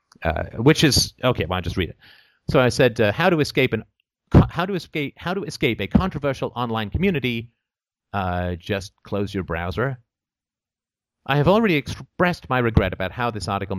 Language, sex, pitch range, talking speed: English, male, 95-130 Hz, 185 wpm